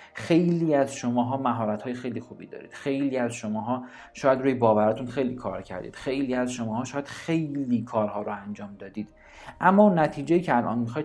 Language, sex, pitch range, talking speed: Persian, male, 115-140 Hz, 170 wpm